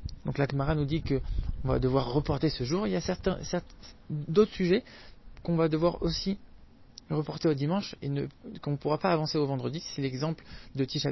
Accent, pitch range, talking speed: French, 130-160 Hz, 200 wpm